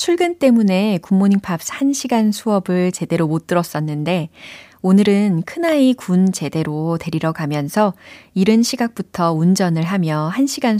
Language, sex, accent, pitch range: Korean, female, native, 160-225 Hz